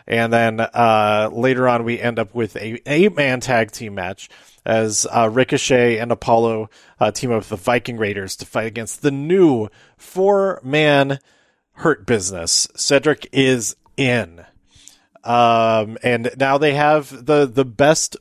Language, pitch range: English, 110-140 Hz